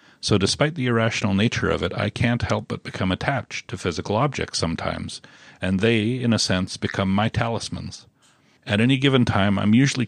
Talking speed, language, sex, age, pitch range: 185 wpm, English, male, 40-59, 95-120 Hz